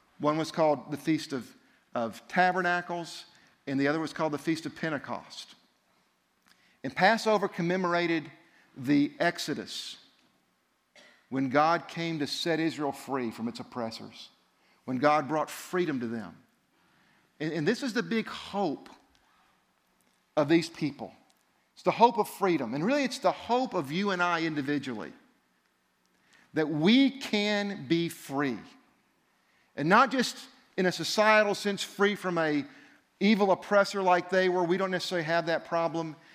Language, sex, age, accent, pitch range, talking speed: English, male, 50-69, American, 155-210 Hz, 145 wpm